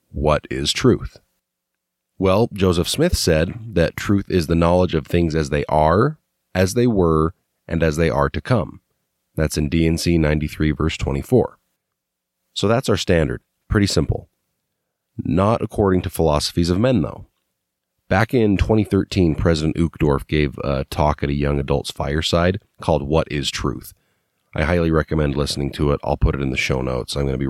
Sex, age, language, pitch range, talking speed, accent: male, 30-49, English, 75-95 Hz, 170 wpm, American